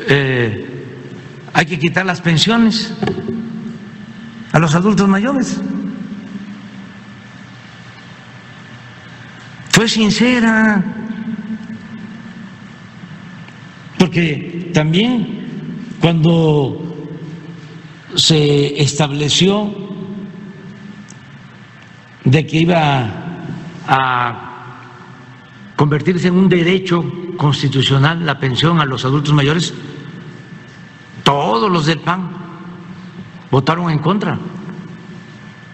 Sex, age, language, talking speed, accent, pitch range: male, 60-79, Spanish, 65 wpm, Mexican, 140-195 Hz